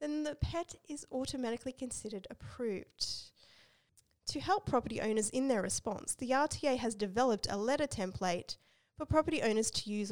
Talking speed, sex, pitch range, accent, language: 155 wpm, female, 200-295 Hz, Australian, English